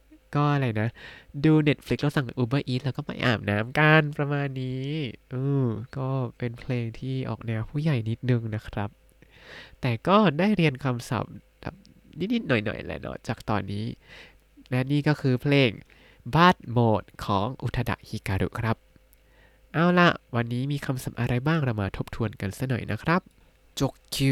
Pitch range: 110-135 Hz